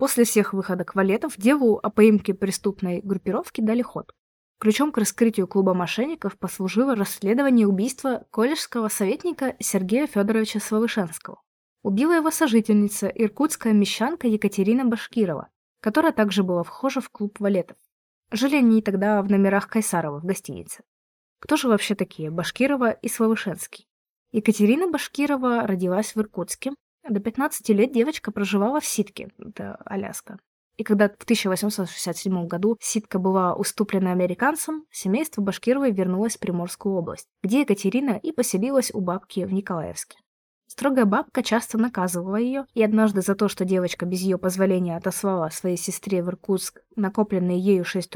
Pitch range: 190-235 Hz